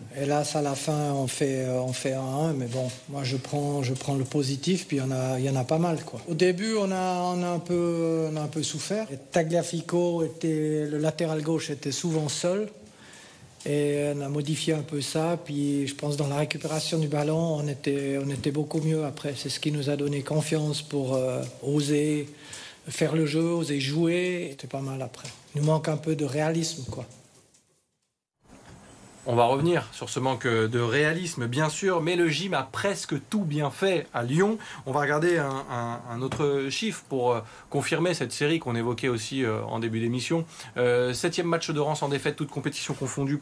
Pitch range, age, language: 130-160 Hz, 50-69, French